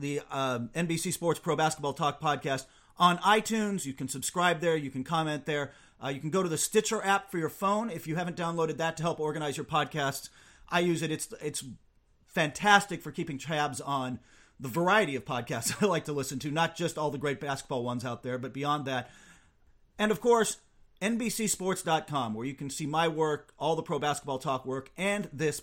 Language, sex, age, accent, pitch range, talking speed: English, male, 40-59, American, 135-170 Hz, 205 wpm